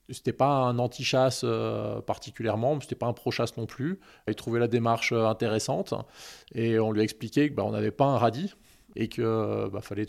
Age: 20-39